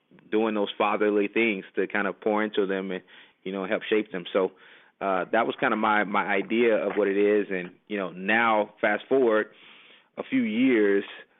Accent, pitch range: American, 105-120 Hz